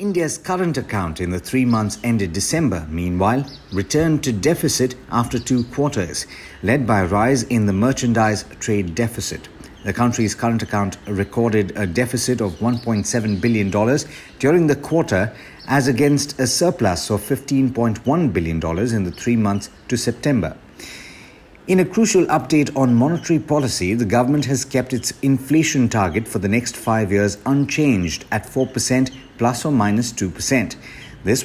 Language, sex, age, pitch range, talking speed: English, male, 60-79, 105-135 Hz, 150 wpm